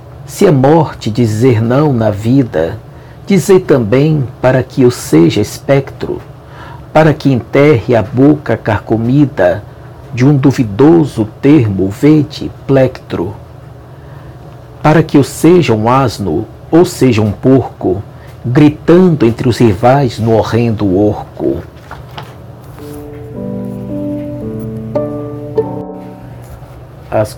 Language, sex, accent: Portuguese, male, Brazilian